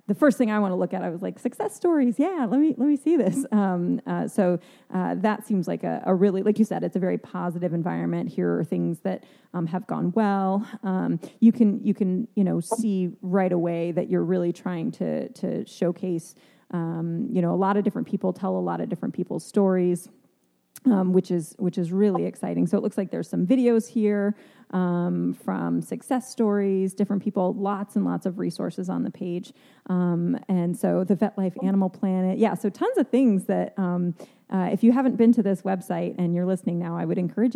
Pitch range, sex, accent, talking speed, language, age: 175-215 Hz, female, American, 220 wpm, English, 30-49